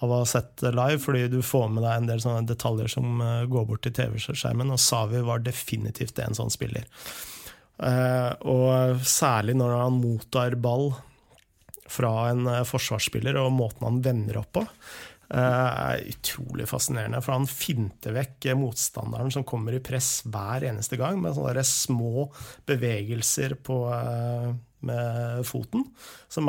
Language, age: English, 30-49